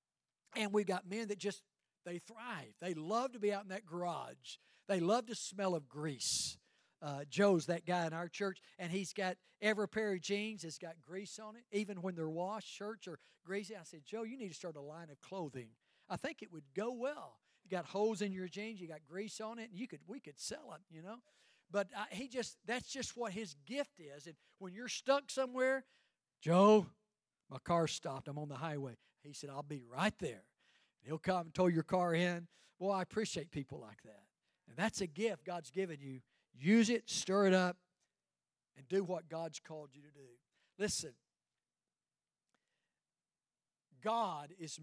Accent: American